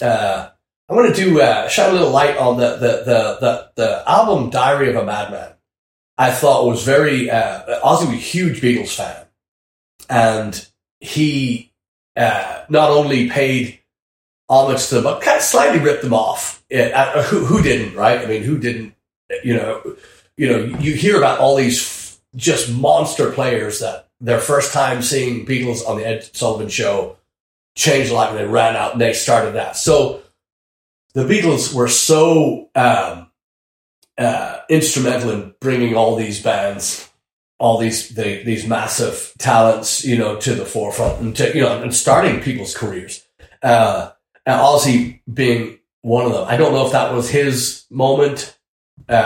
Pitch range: 115-135 Hz